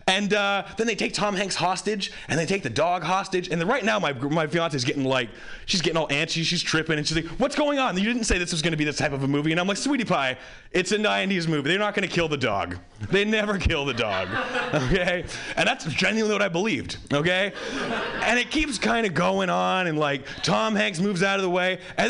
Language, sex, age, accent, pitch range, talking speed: English, male, 30-49, American, 160-230 Hz, 250 wpm